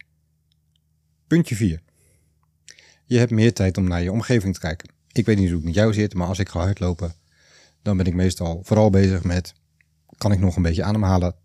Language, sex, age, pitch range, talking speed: Dutch, male, 40-59, 80-100 Hz, 200 wpm